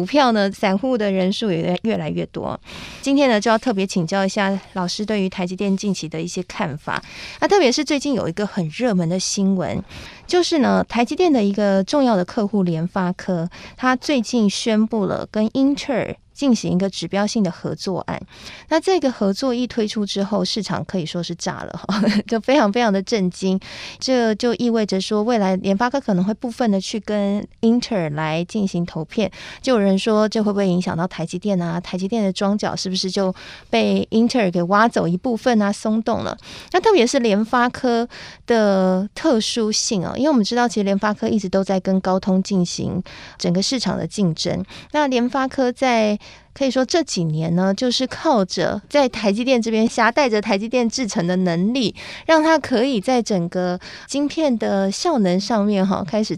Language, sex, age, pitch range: Chinese, female, 20-39, 190-245 Hz